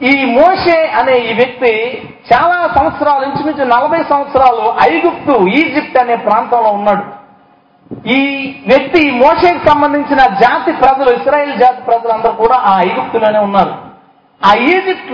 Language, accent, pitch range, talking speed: Telugu, native, 235-315 Hz, 125 wpm